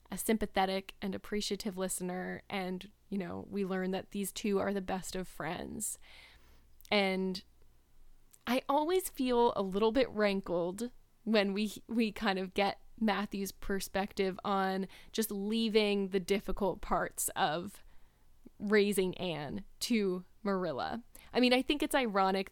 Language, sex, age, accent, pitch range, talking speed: English, female, 10-29, American, 190-215 Hz, 135 wpm